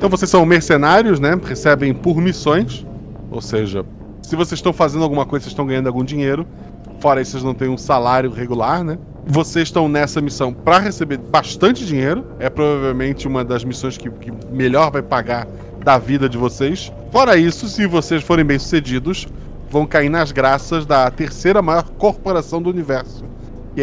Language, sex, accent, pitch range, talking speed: Portuguese, male, Brazilian, 125-165 Hz, 175 wpm